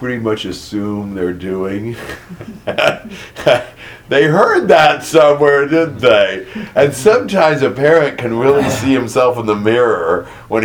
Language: English